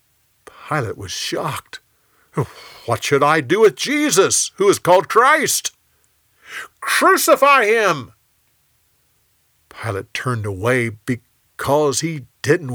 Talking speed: 100 wpm